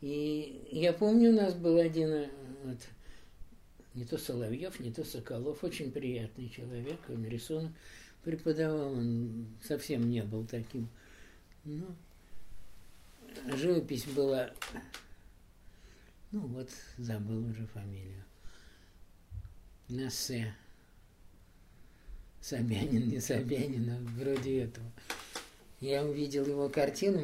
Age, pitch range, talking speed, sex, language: 50-69, 100-140 Hz, 95 wpm, male, Russian